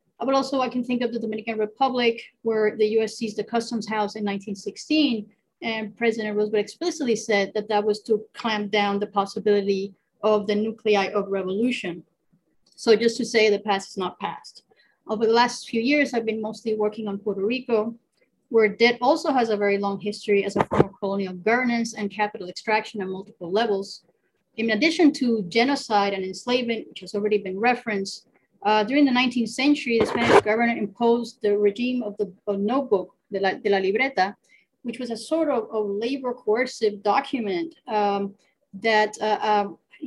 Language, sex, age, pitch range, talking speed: English, female, 30-49, 205-235 Hz, 180 wpm